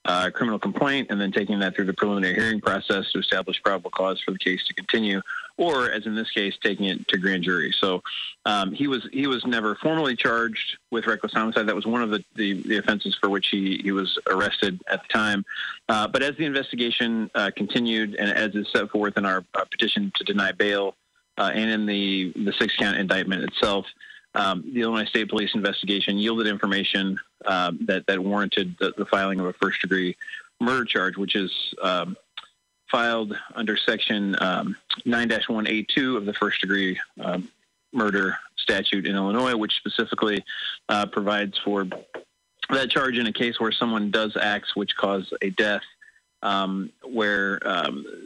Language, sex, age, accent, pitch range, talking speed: English, male, 30-49, American, 100-115 Hz, 180 wpm